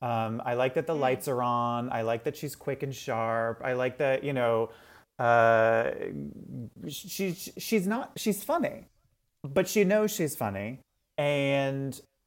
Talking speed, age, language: 165 wpm, 30-49, English